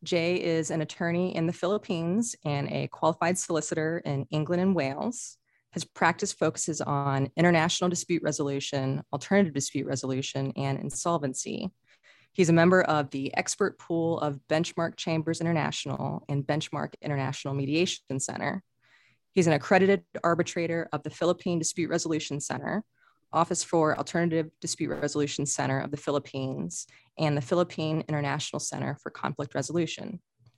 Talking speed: 135 wpm